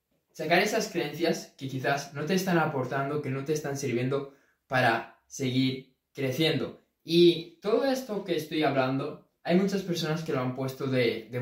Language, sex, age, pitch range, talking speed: Spanish, male, 20-39, 130-165 Hz, 170 wpm